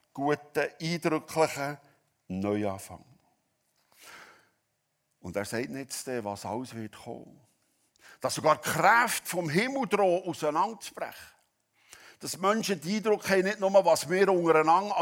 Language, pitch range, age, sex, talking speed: German, 100-150 Hz, 60-79, male, 120 wpm